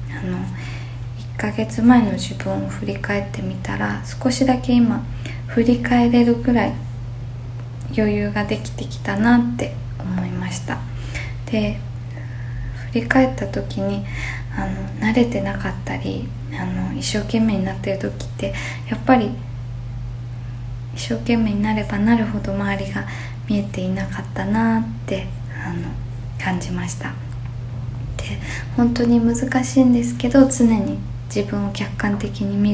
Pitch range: 100-120 Hz